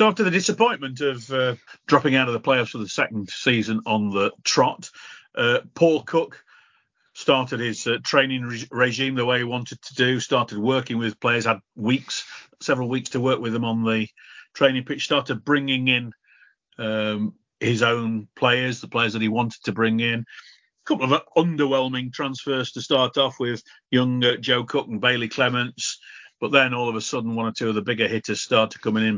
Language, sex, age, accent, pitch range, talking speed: English, male, 40-59, British, 110-140 Hz, 190 wpm